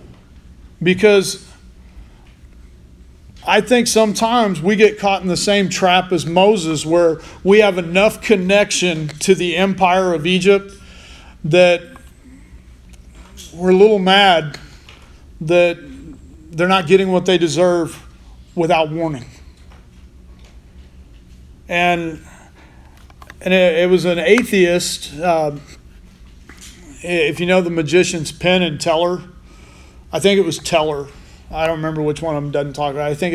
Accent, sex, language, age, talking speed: American, male, English, 40-59, 130 wpm